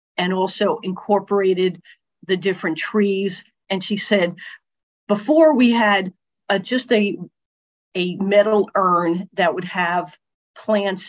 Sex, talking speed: female, 115 wpm